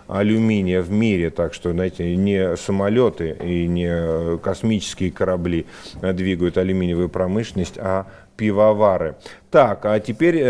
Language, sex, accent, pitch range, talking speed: Russian, male, native, 95-110 Hz, 115 wpm